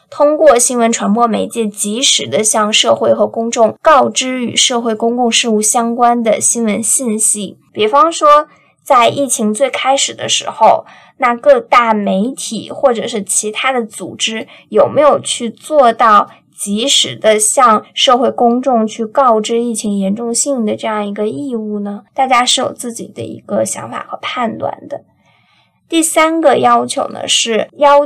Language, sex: Chinese, female